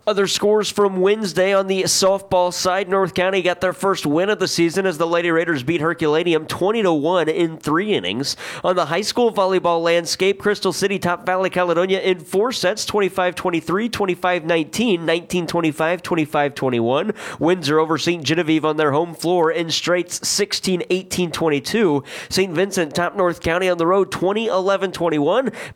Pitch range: 155-190 Hz